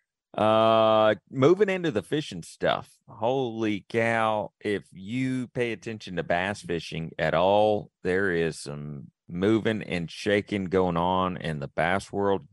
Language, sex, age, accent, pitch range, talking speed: English, male, 40-59, American, 90-115 Hz, 140 wpm